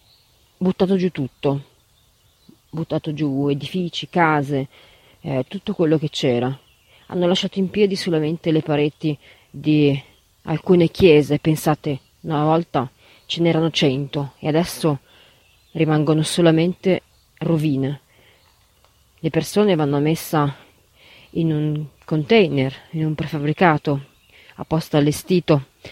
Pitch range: 140-170 Hz